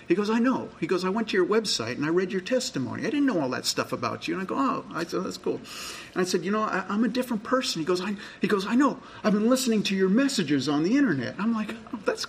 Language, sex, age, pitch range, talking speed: English, male, 40-59, 150-230 Hz, 305 wpm